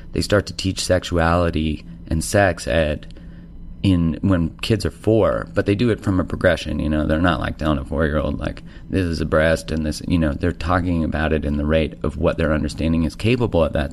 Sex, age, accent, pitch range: male, 30-49, American, 80-90 Hz